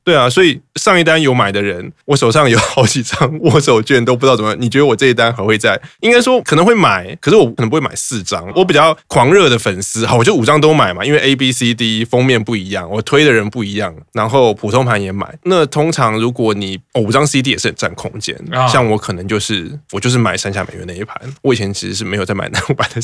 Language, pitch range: Chinese, 110-145 Hz